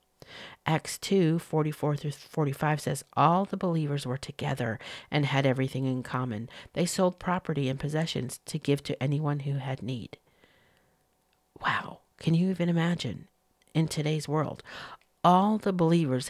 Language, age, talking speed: English, 50-69, 145 wpm